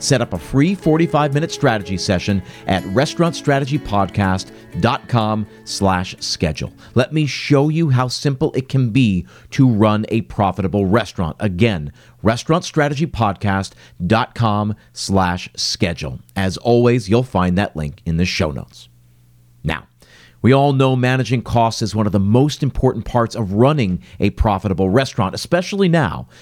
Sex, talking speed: male, 135 wpm